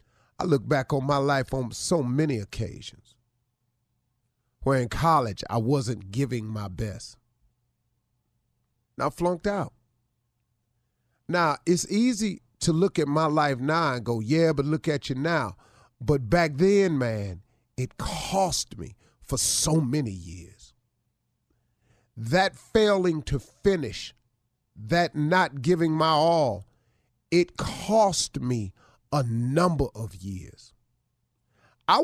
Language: English